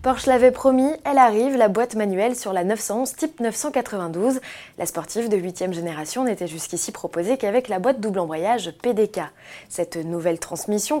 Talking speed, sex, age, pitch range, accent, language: 165 wpm, female, 20-39, 175-250 Hz, French, French